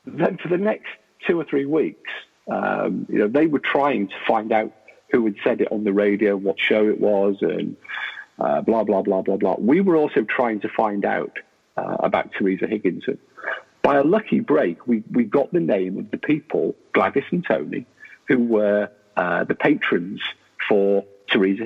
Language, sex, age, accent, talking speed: English, male, 50-69, British, 190 wpm